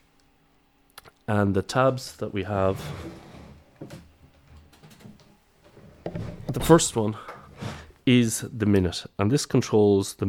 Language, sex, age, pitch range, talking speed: English, male, 30-49, 90-105 Hz, 95 wpm